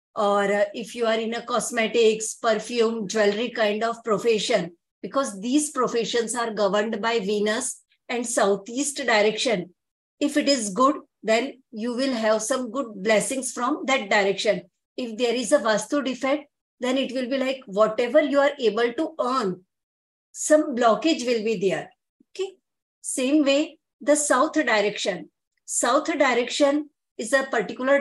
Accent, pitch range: Indian, 220-270 Hz